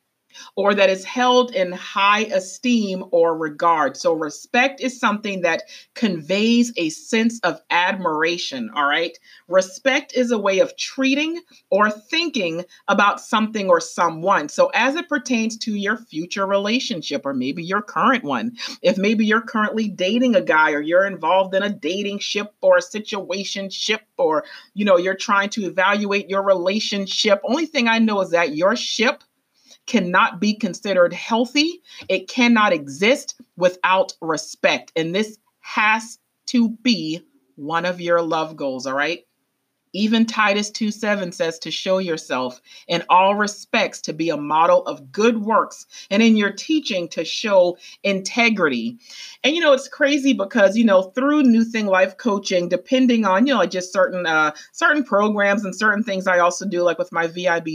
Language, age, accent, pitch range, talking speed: English, 40-59, American, 180-235 Hz, 160 wpm